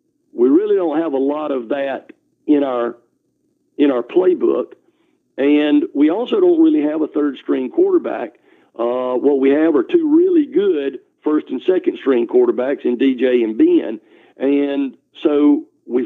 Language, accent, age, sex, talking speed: English, American, 50-69, male, 155 wpm